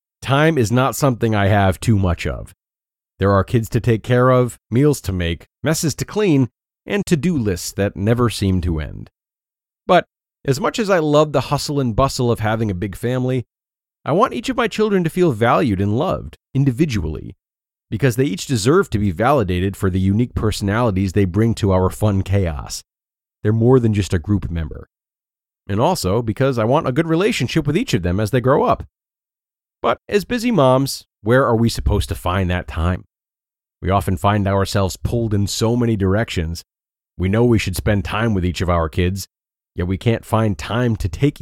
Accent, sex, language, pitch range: American, male, English, 95-130 Hz